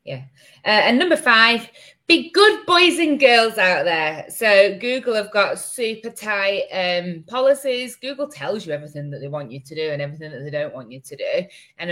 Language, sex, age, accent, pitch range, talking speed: English, female, 20-39, British, 150-210 Hz, 200 wpm